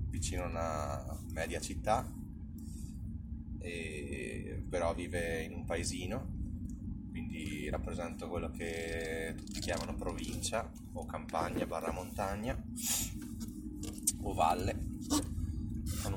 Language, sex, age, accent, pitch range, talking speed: Italian, male, 20-39, native, 80-100 Hz, 95 wpm